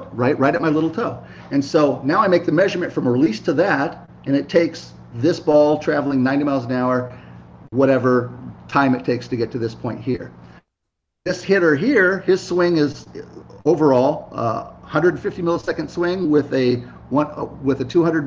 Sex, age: male, 40-59